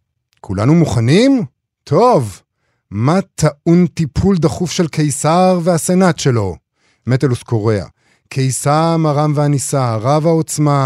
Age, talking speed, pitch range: 50-69, 100 wpm, 115-150 Hz